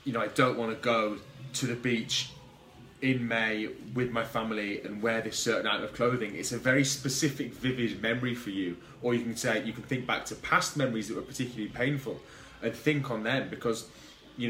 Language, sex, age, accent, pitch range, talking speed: English, male, 20-39, British, 115-135 Hz, 210 wpm